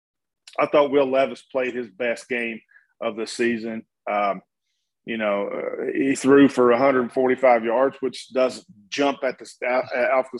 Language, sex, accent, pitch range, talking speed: English, male, American, 120-140 Hz, 175 wpm